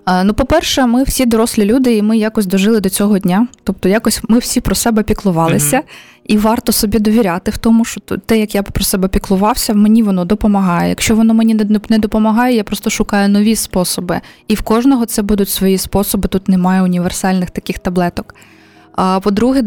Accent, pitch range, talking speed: native, 185-220 Hz, 180 wpm